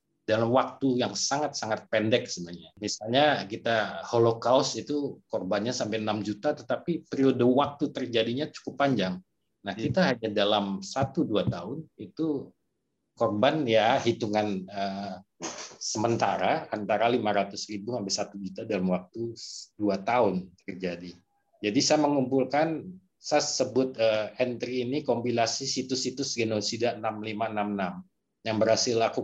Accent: native